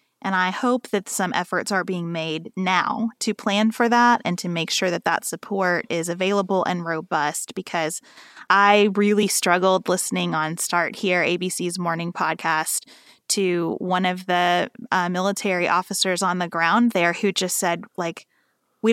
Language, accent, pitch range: English, American, 180-220 Hz